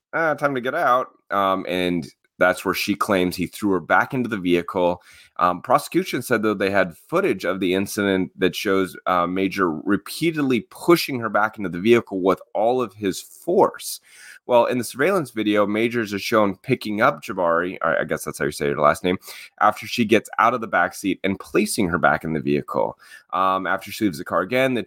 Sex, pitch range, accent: male, 90-115 Hz, American